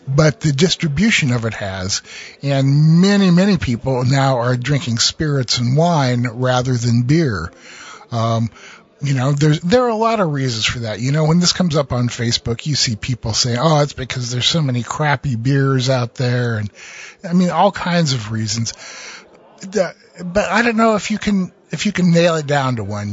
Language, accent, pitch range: English, American, 120-155 Hz